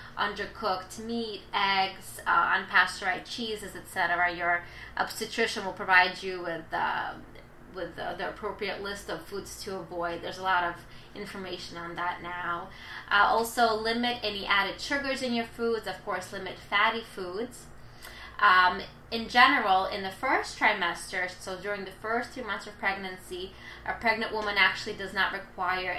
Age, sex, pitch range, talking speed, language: 20-39, female, 180-210 Hz, 155 wpm, English